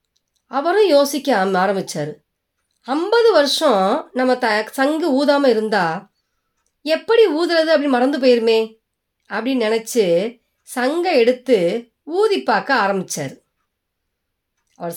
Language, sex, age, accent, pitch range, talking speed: Tamil, female, 30-49, native, 165-260 Hz, 90 wpm